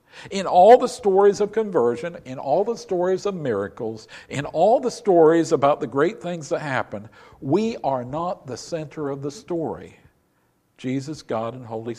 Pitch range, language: 120-165 Hz, English